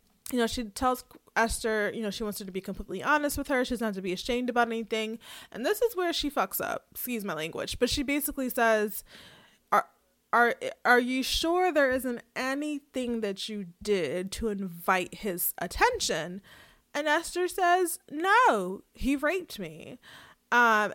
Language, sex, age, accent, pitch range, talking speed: English, female, 20-39, American, 215-290 Hz, 170 wpm